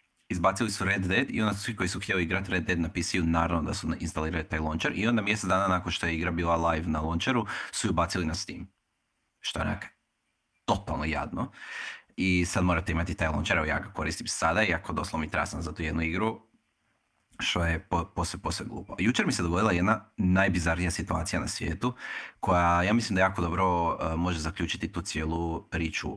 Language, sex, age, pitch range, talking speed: Croatian, male, 30-49, 80-100 Hz, 195 wpm